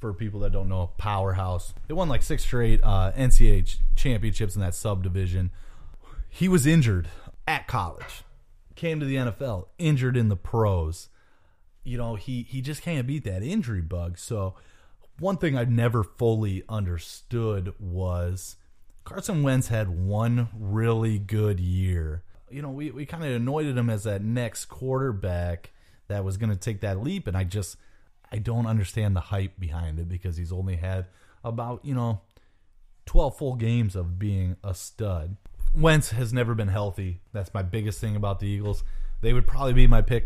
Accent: American